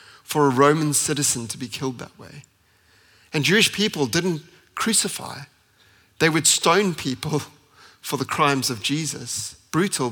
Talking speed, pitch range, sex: 140 wpm, 115-140 Hz, male